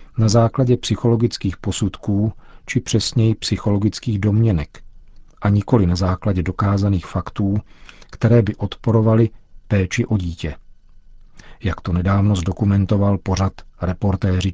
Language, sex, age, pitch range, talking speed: Czech, male, 50-69, 95-115 Hz, 105 wpm